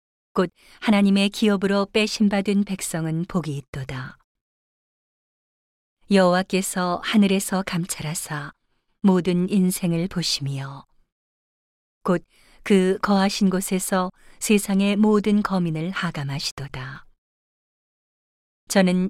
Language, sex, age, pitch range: Korean, female, 40-59, 160-200 Hz